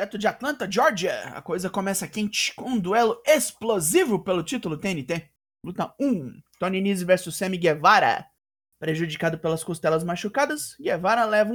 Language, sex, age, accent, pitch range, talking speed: Portuguese, male, 20-39, Brazilian, 160-215 Hz, 140 wpm